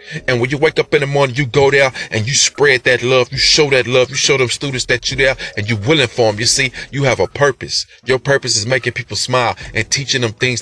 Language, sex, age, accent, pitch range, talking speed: English, male, 30-49, American, 110-135 Hz, 270 wpm